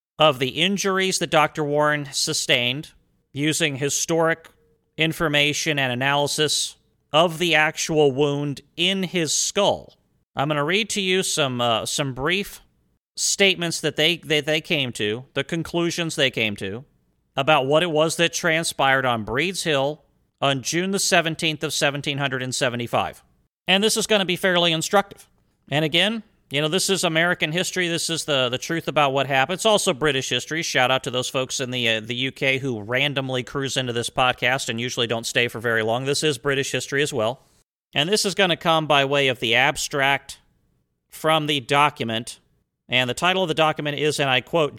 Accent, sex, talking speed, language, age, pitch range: American, male, 185 wpm, English, 40-59, 130-165 Hz